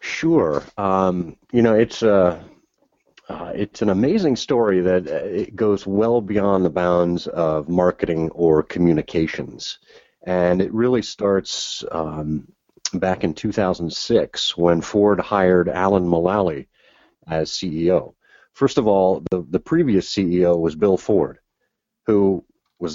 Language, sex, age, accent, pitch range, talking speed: English, male, 40-59, American, 85-105 Hz, 130 wpm